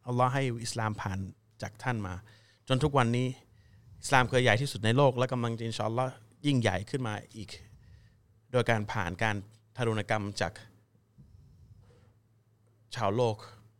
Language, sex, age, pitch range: Thai, male, 30-49, 110-125 Hz